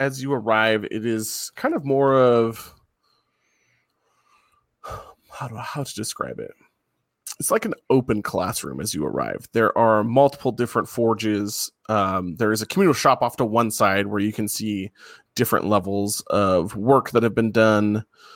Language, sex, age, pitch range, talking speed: English, male, 20-39, 105-120 Hz, 160 wpm